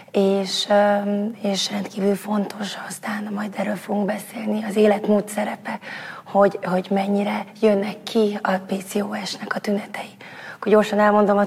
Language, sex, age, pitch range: Hungarian, female, 20-39, 195-215 Hz